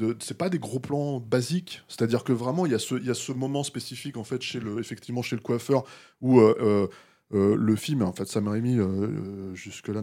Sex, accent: male, French